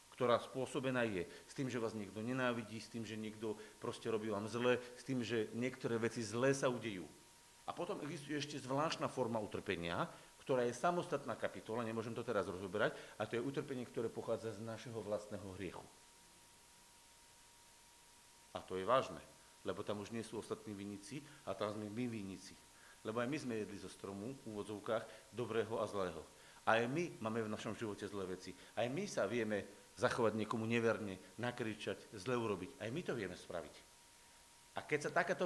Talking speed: 180 wpm